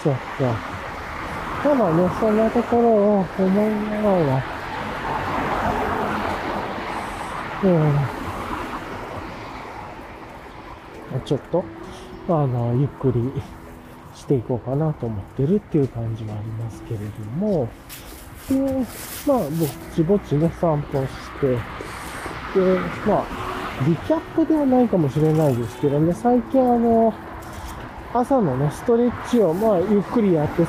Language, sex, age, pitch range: Japanese, male, 40-59, 140-215 Hz